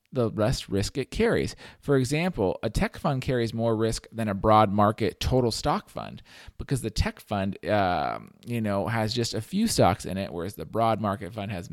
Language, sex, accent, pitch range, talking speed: English, male, American, 105-135 Hz, 205 wpm